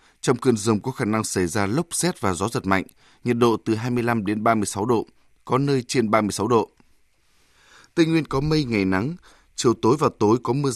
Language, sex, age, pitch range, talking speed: Vietnamese, male, 20-39, 105-130 Hz, 210 wpm